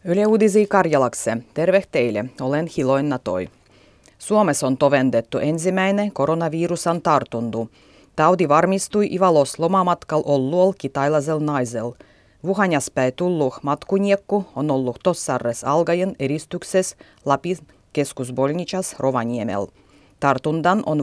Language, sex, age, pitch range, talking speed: Finnish, female, 30-49, 135-180 Hz, 95 wpm